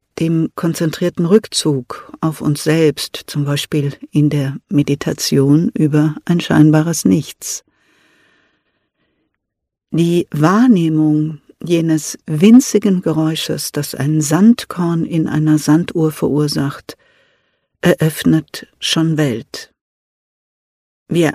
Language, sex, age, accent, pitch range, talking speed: German, female, 60-79, German, 150-175 Hz, 85 wpm